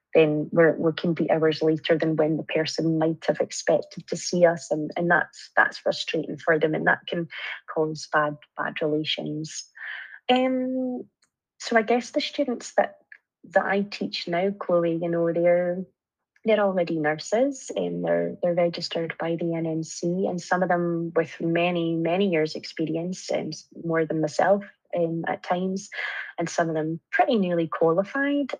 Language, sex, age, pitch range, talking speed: English, female, 20-39, 165-195 Hz, 165 wpm